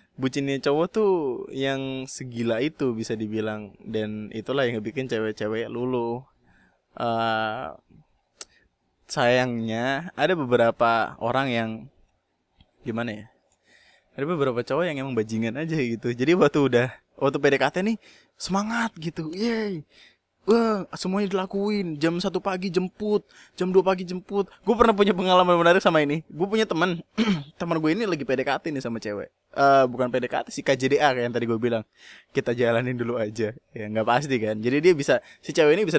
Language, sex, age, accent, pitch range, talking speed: Indonesian, male, 20-39, native, 115-160 Hz, 155 wpm